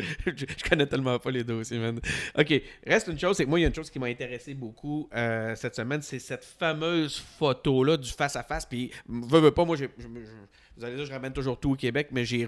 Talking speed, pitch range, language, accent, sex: 215 wpm, 120-150 Hz, French, Canadian, male